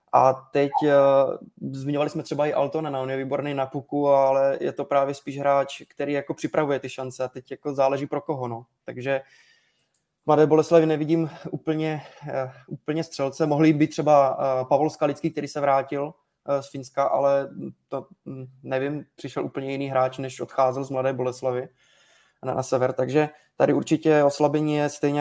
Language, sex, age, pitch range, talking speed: Czech, male, 20-39, 135-155 Hz, 160 wpm